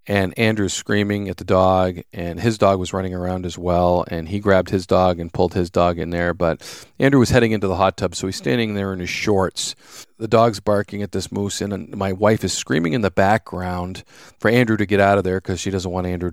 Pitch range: 90-115 Hz